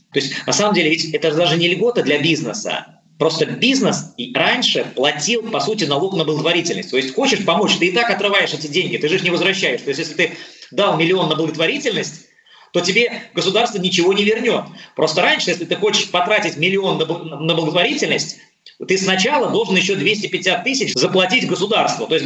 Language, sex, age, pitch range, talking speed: Russian, male, 20-39, 150-195 Hz, 185 wpm